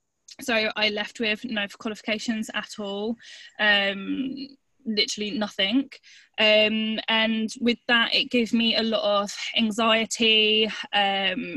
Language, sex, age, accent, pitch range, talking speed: English, female, 10-29, British, 200-240 Hz, 120 wpm